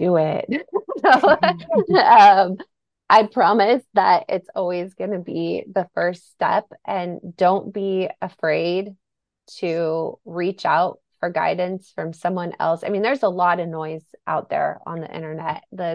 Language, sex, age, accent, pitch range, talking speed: English, female, 20-39, American, 170-200 Hz, 150 wpm